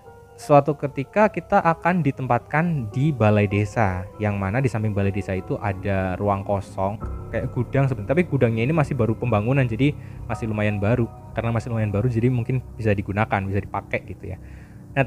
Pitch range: 105-135 Hz